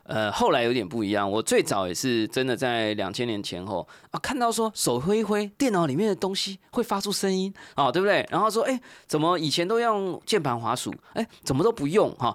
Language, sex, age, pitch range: Chinese, male, 20-39, 120-190 Hz